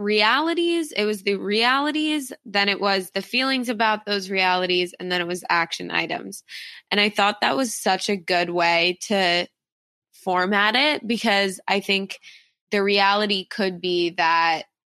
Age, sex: 20-39, female